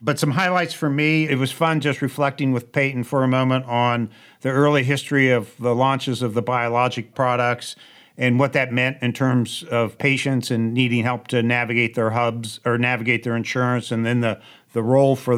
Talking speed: 200 wpm